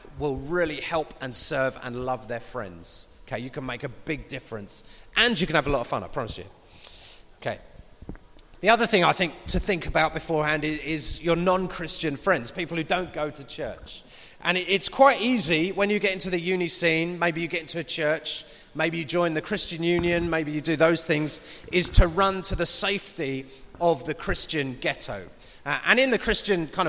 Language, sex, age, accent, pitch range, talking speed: English, male, 30-49, British, 130-175 Hz, 205 wpm